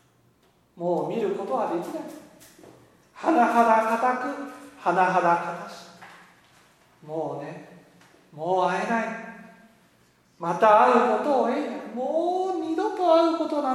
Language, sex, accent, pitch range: Japanese, male, native, 210-310 Hz